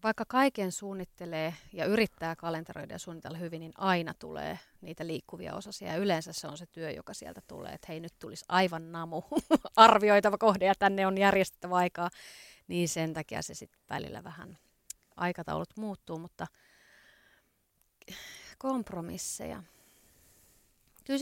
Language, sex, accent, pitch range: Finnish, female, native, 170-220 Hz